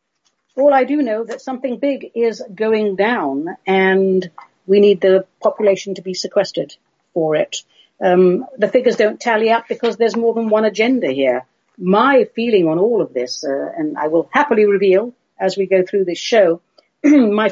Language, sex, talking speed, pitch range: English, female, 180 wpm, 165-215 Hz